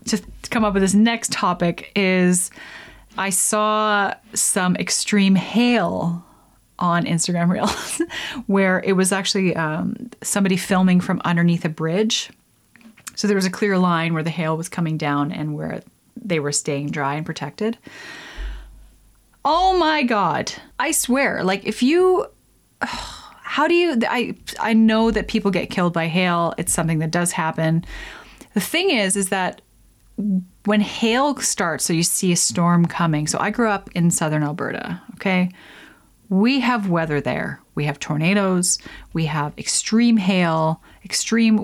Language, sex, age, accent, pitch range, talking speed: English, female, 30-49, American, 170-220 Hz, 155 wpm